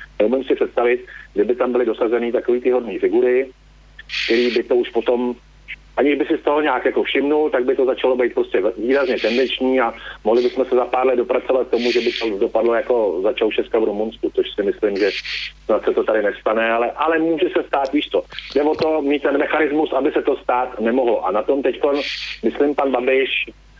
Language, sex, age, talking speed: Slovak, male, 40-59, 210 wpm